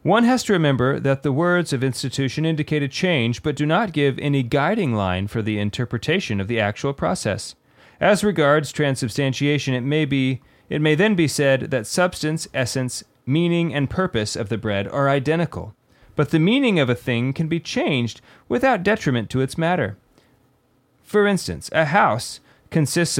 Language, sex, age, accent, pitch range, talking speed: English, male, 30-49, American, 120-155 Hz, 175 wpm